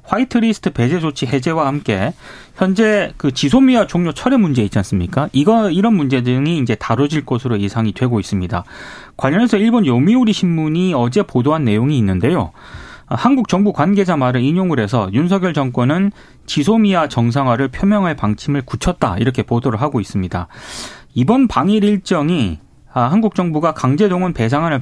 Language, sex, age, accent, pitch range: Korean, male, 30-49, native, 120-190 Hz